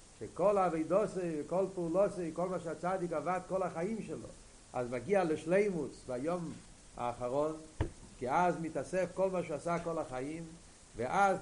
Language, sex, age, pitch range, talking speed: Hebrew, male, 60-79, 155-200 Hz, 135 wpm